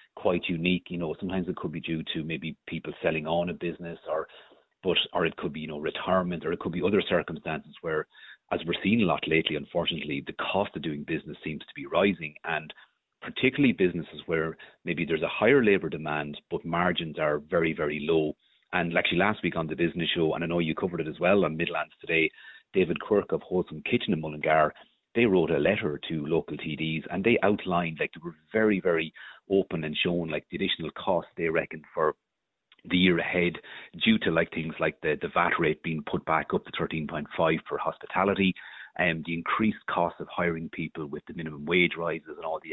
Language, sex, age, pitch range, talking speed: English, male, 40-59, 80-90 Hz, 210 wpm